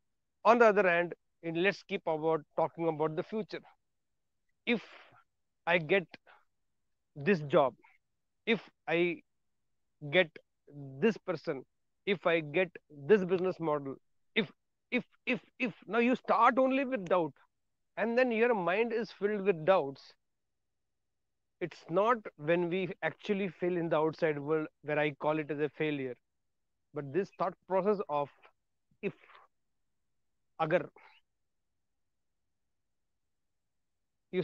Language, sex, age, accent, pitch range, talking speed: English, male, 40-59, Indian, 155-220 Hz, 115 wpm